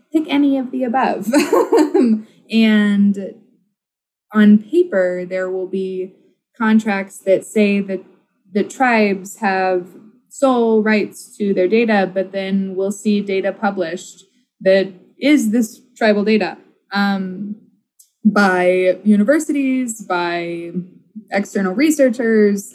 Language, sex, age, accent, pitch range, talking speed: English, female, 20-39, American, 190-230 Hz, 105 wpm